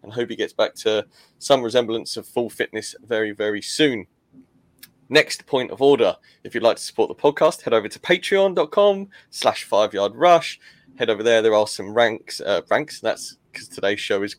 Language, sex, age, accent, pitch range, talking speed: English, male, 20-39, British, 110-145 Hz, 190 wpm